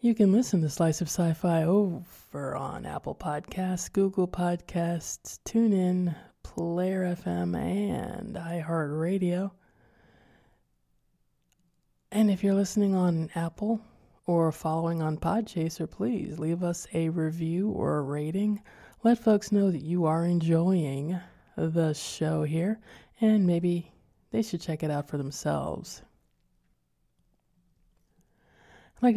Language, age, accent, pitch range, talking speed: English, 20-39, American, 160-185 Hz, 115 wpm